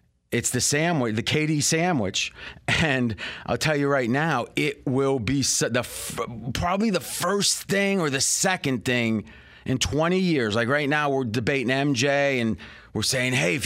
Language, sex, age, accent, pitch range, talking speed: English, male, 30-49, American, 120-155 Hz, 165 wpm